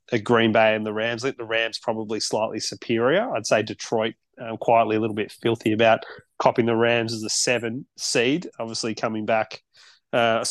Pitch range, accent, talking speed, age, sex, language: 110-125 Hz, Australian, 175 wpm, 30-49, male, English